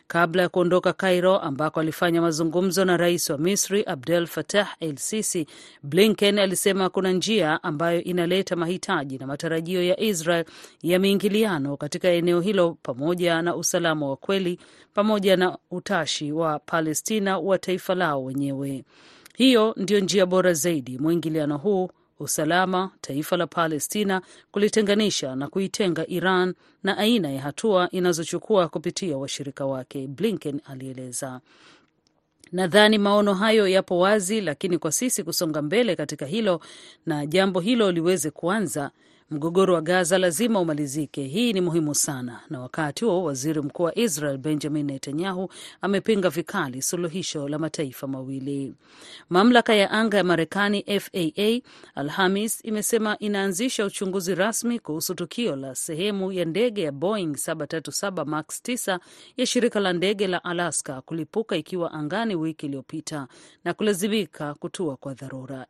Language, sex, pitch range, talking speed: Swahili, female, 155-195 Hz, 135 wpm